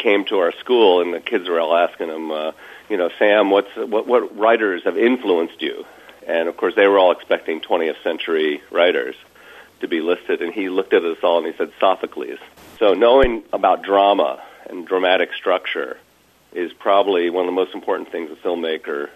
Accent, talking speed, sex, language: American, 195 wpm, male, English